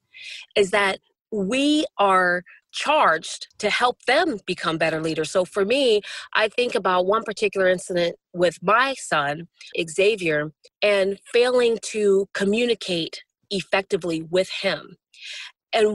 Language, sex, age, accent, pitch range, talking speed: English, female, 30-49, American, 195-255 Hz, 120 wpm